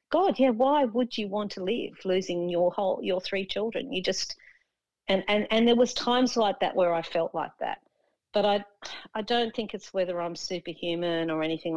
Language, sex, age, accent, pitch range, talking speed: English, female, 40-59, Australian, 165-210 Hz, 210 wpm